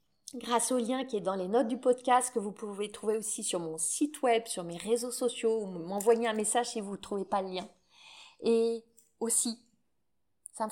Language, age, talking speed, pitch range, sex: French, 30-49, 215 wpm, 205-260 Hz, female